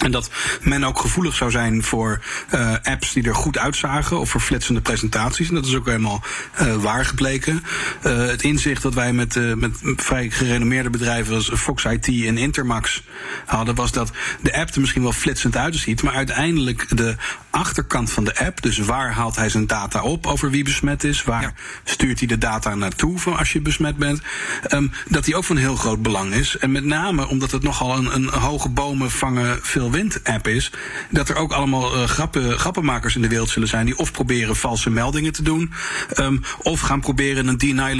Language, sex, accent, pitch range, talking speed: Dutch, male, Dutch, 115-140 Hz, 205 wpm